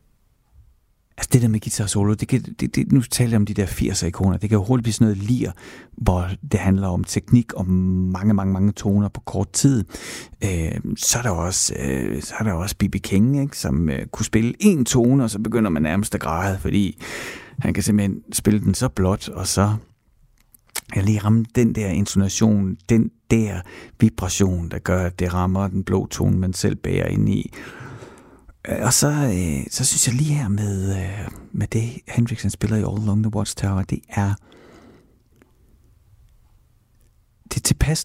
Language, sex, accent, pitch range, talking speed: Danish, male, native, 95-115 Hz, 190 wpm